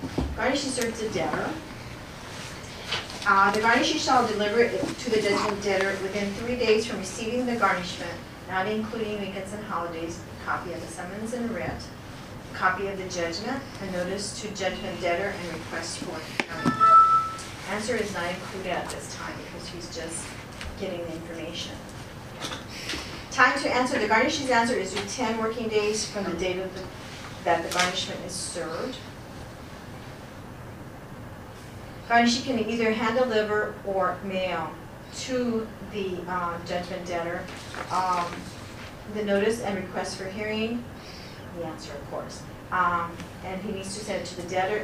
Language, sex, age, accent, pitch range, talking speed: English, female, 40-59, American, 180-220 Hz, 150 wpm